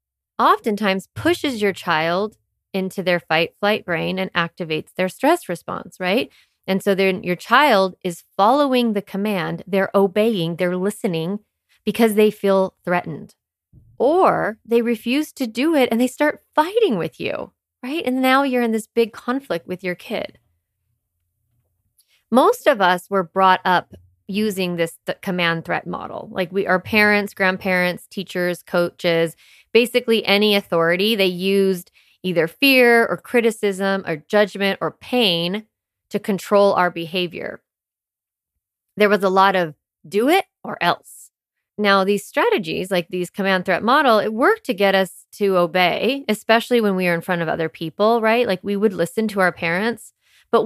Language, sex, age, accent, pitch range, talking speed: English, female, 30-49, American, 175-220 Hz, 155 wpm